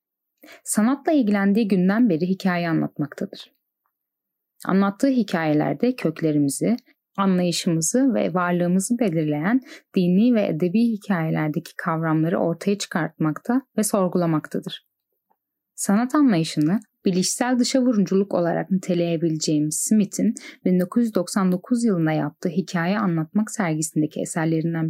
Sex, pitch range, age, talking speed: female, 165-225 Hz, 10-29, 85 wpm